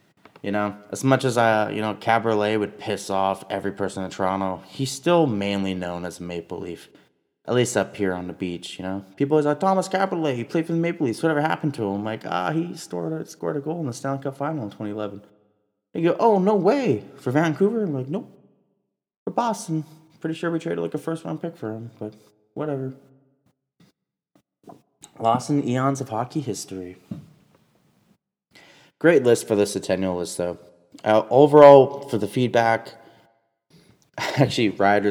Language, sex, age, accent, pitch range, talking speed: English, male, 20-39, American, 95-135 Hz, 190 wpm